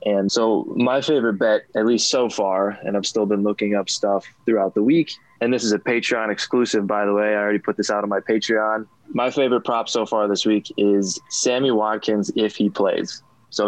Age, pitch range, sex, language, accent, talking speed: 20-39, 105-120 Hz, male, English, American, 220 wpm